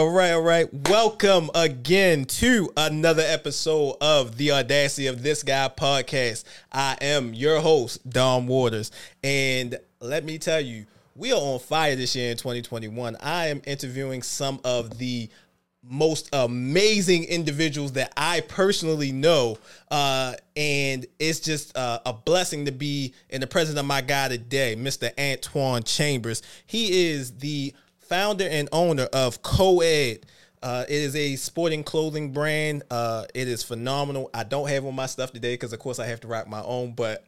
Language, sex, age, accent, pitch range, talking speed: English, male, 20-39, American, 120-150 Hz, 165 wpm